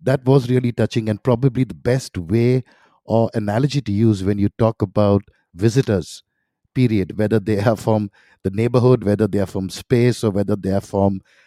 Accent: Indian